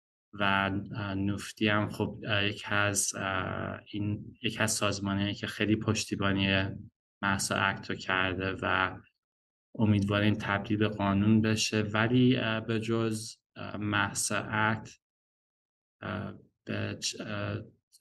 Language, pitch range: English, 100-110 Hz